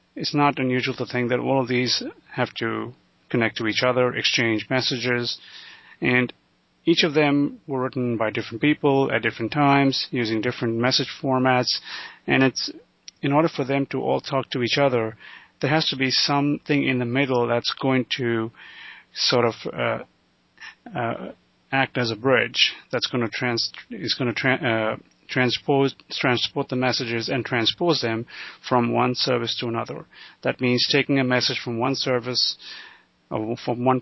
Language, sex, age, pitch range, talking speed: English, male, 30-49, 115-135 Hz, 170 wpm